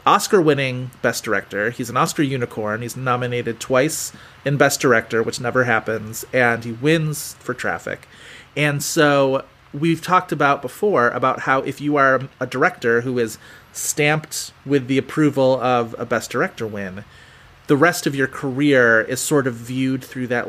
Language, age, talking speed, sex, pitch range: English, 30-49, 165 wpm, male, 120-150 Hz